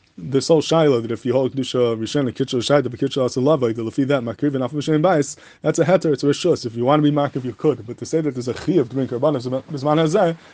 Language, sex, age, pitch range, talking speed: English, male, 20-39, 120-145 Hz, 260 wpm